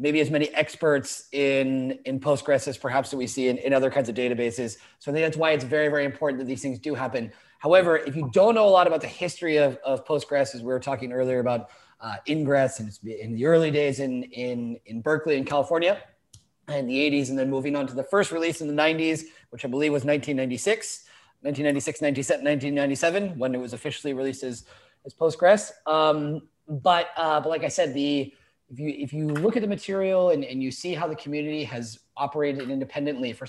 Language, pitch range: English, 135-165 Hz